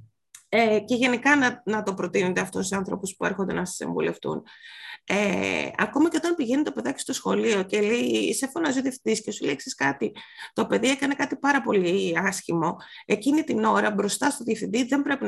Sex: female